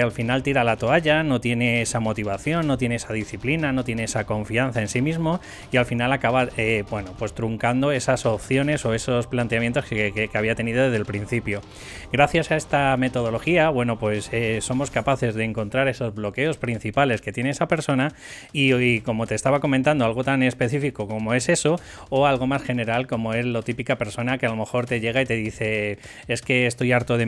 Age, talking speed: 20-39, 205 wpm